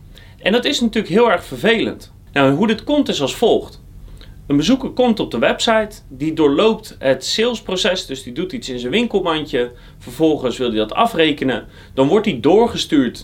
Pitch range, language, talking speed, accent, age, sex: 125-195 Hz, Dutch, 185 wpm, Dutch, 30-49, male